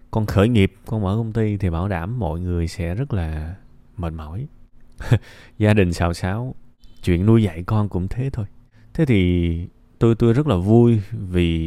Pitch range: 90-120 Hz